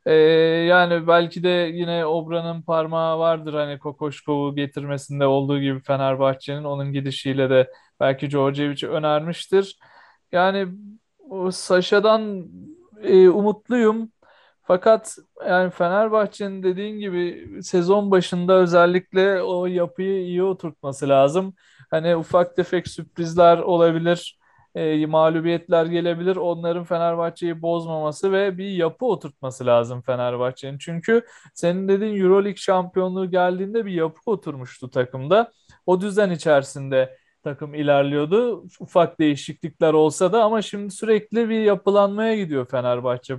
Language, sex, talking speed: Turkish, male, 110 wpm